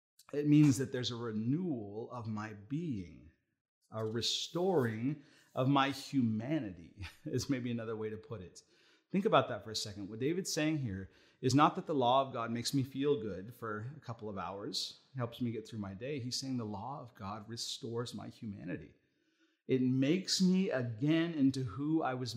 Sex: male